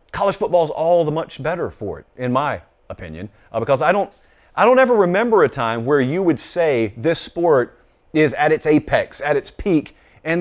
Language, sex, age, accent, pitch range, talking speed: English, male, 40-59, American, 125-185 Hz, 200 wpm